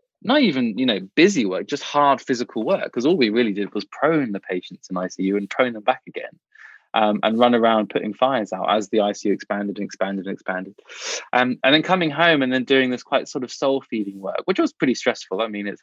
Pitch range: 100-125 Hz